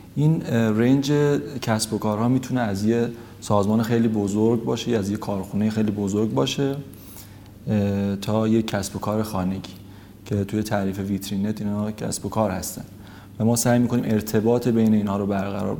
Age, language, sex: 30-49, Persian, male